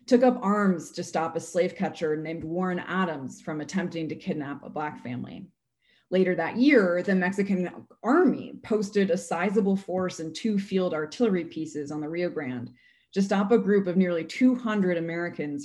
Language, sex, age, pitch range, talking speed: English, female, 20-39, 160-220 Hz, 175 wpm